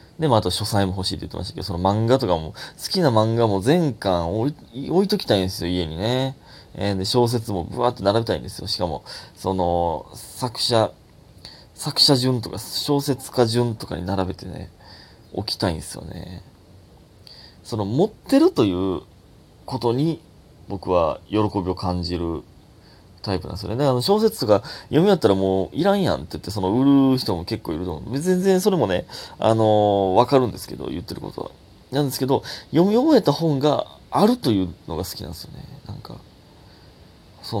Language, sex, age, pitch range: Japanese, male, 20-39, 90-135 Hz